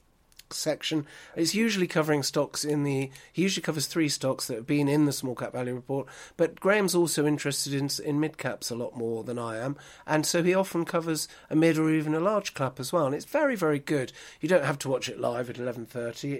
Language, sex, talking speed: English, male, 235 wpm